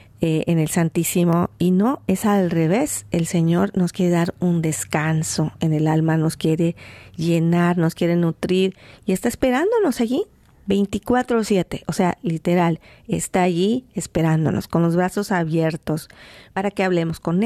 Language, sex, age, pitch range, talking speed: Spanish, female, 40-59, 160-190 Hz, 150 wpm